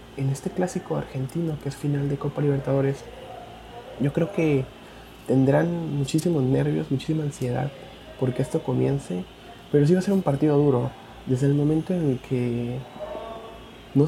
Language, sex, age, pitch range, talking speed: Spanish, male, 30-49, 120-145 Hz, 155 wpm